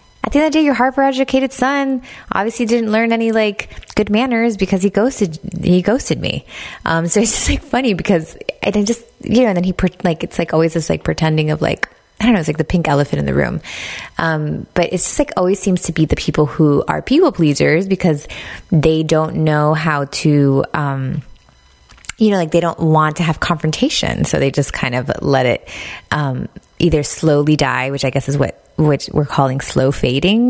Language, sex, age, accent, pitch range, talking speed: English, female, 20-39, American, 155-210 Hz, 215 wpm